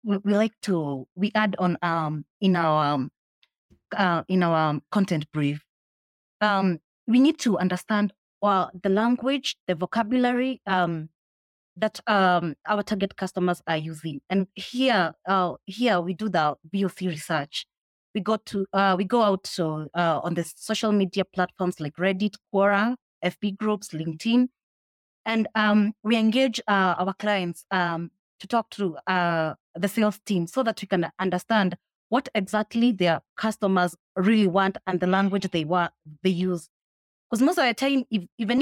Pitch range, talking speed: 175-215 Hz, 165 wpm